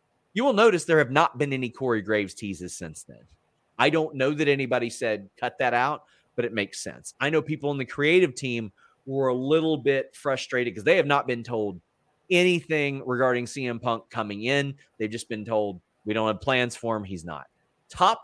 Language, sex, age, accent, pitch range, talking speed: English, male, 30-49, American, 100-135 Hz, 205 wpm